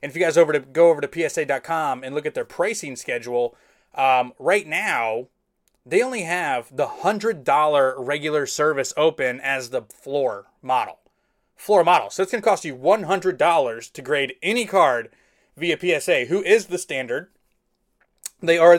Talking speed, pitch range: 170 wpm, 135-175 Hz